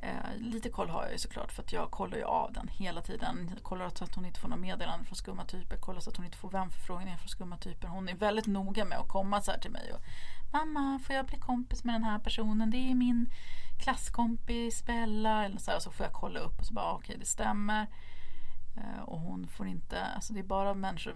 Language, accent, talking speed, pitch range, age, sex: English, Swedish, 255 wpm, 170-230 Hz, 30-49, female